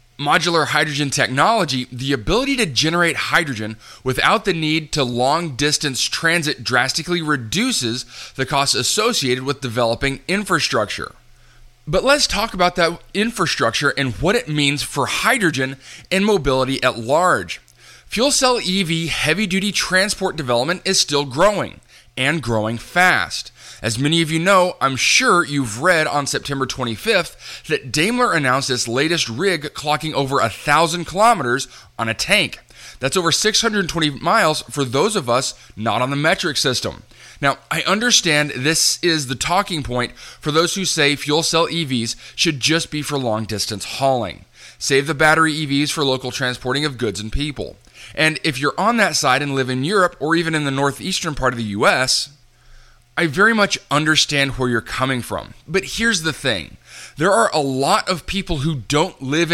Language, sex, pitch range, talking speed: English, male, 130-170 Hz, 165 wpm